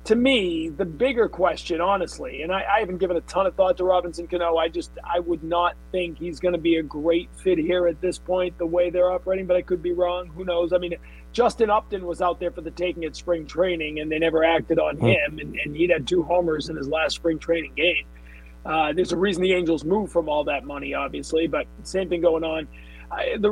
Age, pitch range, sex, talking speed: 30-49, 160-180 Hz, male, 240 wpm